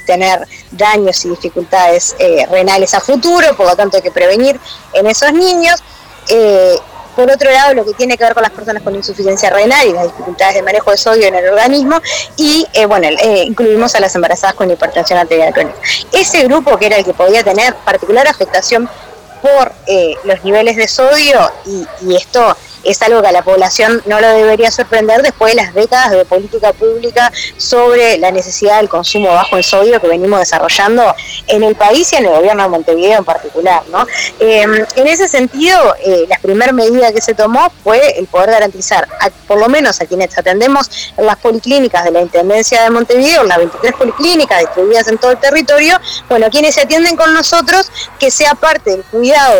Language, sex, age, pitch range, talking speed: Spanish, female, 20-39, 190-270 Hz, 195 wpm